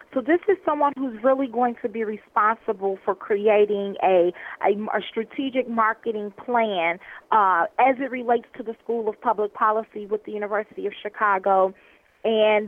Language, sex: English, female